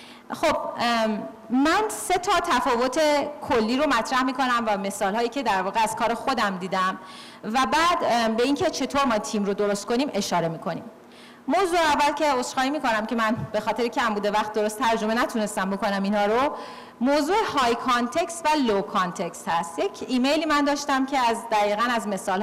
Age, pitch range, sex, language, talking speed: 40-59, 210-285 Hz, female, Persian, 175 wpm